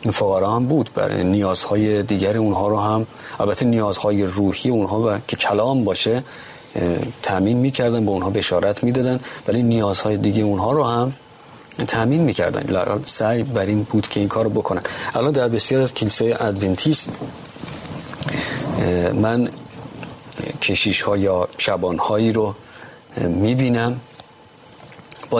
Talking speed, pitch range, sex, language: 140 wpm, 100-120 Hz, male, Persian